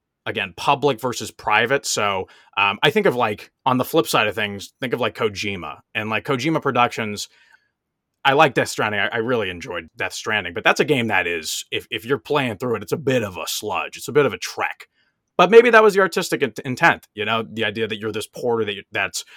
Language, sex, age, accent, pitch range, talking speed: English, male, 30-49, American, 105-135 Hz, 240 wpm